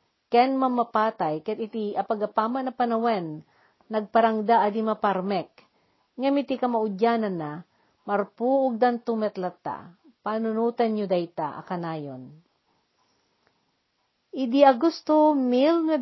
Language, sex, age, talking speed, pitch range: Filipino, female, 50-69, 90 wpm, 195-250 Hz